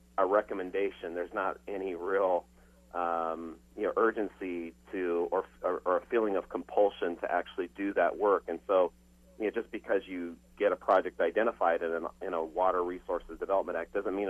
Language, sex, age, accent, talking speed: English, male, 40-59, American, 190 wpm